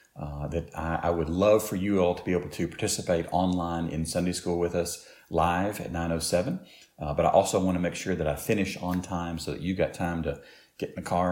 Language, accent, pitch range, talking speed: English, American, 80-90 Hz, 245 wpm